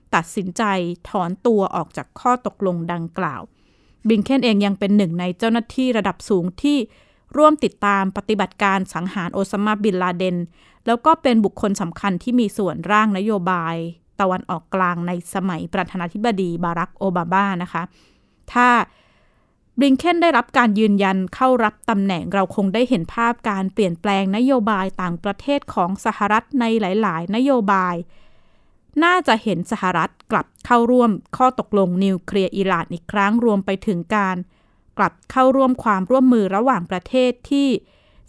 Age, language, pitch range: 20-39, Thai, 185-235 Hz